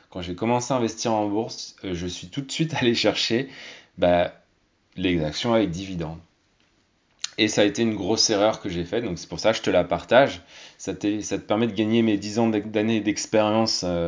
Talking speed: 215 wpm